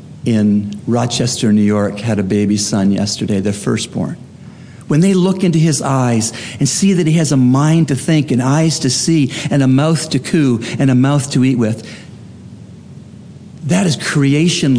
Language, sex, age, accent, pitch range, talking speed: English, male, 50-69, American, 130-185 Hz, 180 wpm